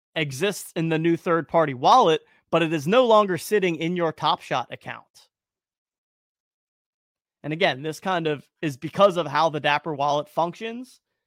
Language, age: English, 30-49